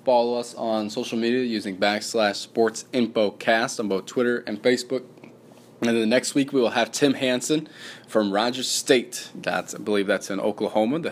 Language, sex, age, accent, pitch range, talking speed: English, male, 20-39, American, 105-120 Hz, 190 wpm